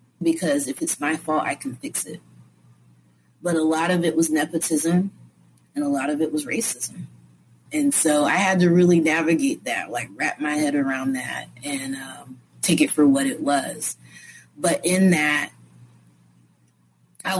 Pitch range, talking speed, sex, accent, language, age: 135-175 Hz, 170 wpm, female, American, English, 30-49